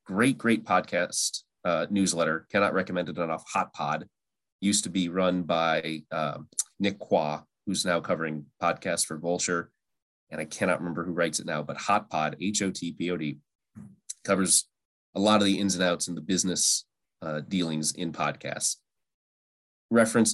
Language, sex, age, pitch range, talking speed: English, male, 30-49, 80-100 Hz, 155 wpm